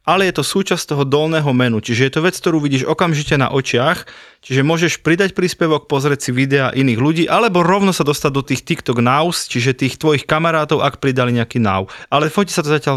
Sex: male